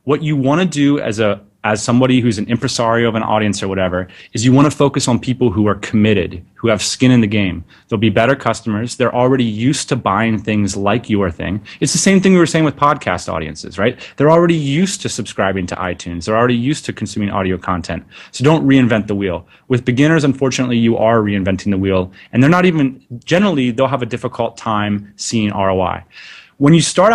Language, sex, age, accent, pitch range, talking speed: English, male, 30-49, American, 105-135 Hz, 220 wpm